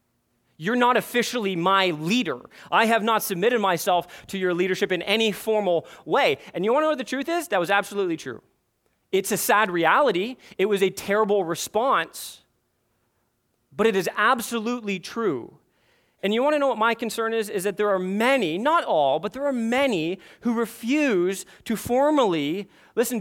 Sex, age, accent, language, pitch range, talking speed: male, 30-49, American, English, 160-230 Hz, 180 wpm